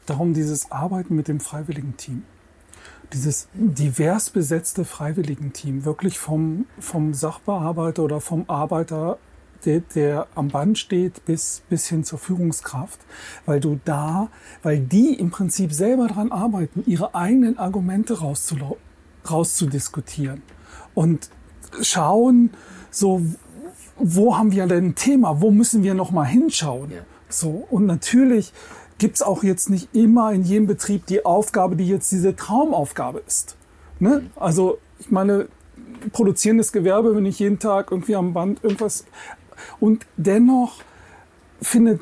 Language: German